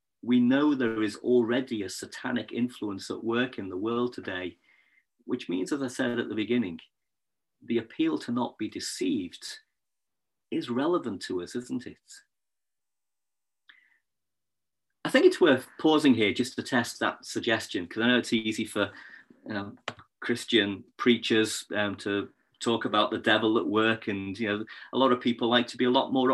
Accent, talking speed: British, 175 wpm